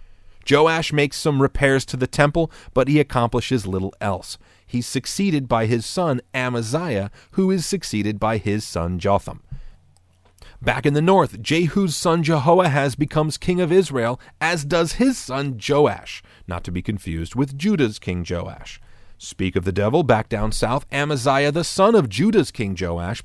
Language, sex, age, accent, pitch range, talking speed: English, male, 30-49, American, 95-145 Hz, 165 wpm